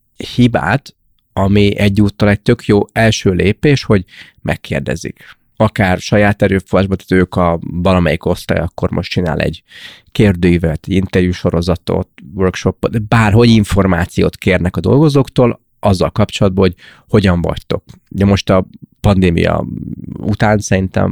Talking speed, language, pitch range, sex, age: 120 wpm, Hungarian, 90-105 Hz, male, 30-49